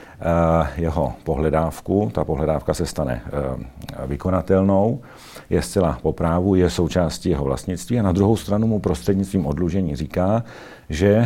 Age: 50-69